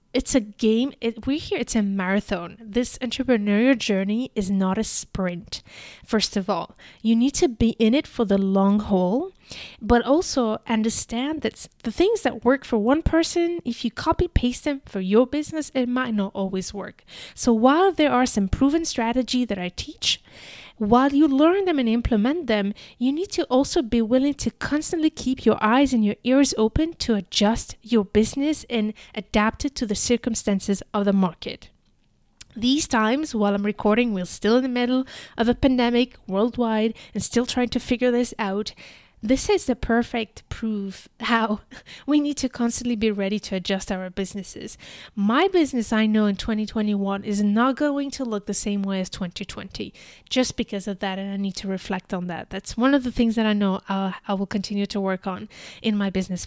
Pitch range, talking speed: 205-255 Hz, 190 wpm